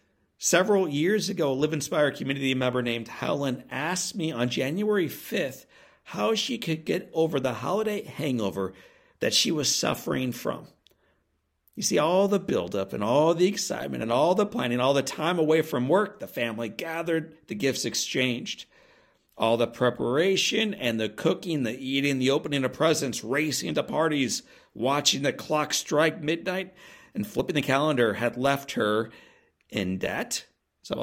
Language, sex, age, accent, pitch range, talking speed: English, male, 50-69, American, 120-165 Hz, 160 wpm